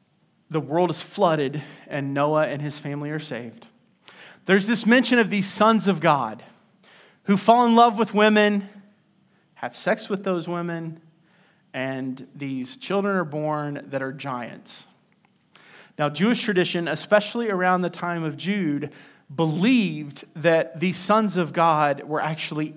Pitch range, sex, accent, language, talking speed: 145-200 Hz, male, American, English, 145 wpm